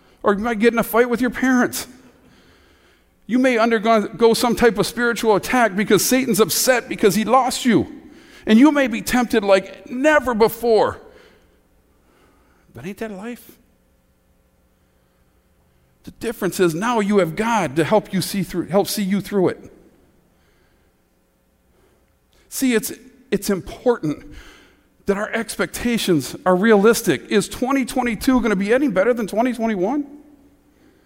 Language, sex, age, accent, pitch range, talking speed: English, male, 50-69, American, 180-245 Hz, 140 wpm